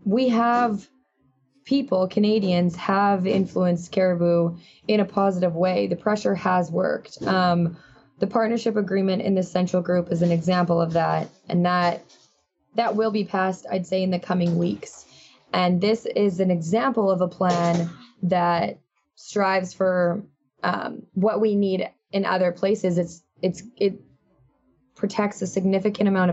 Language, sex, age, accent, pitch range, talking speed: English, female, 20-39, American, 175-205 Hz, 150 wpm